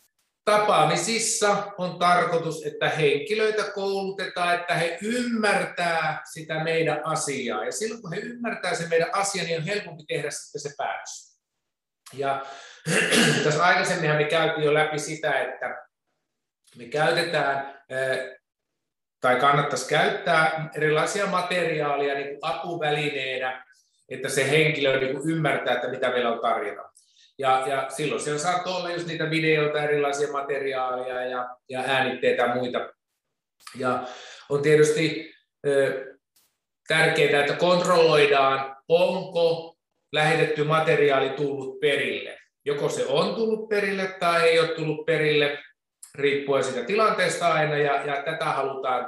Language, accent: Finnish, native